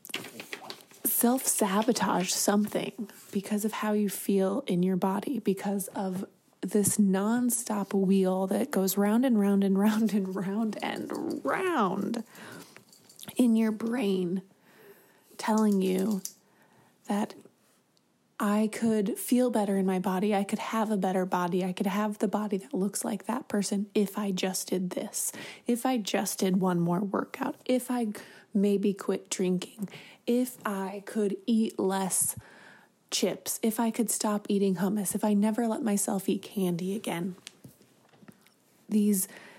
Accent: American